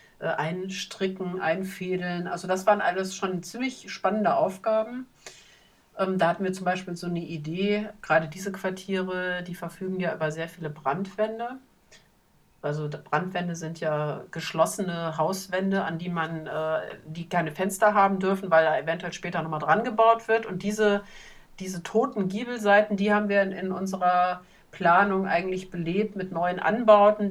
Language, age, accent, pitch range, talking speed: German, 50-69, German, 170-200 Hz, 145 wpm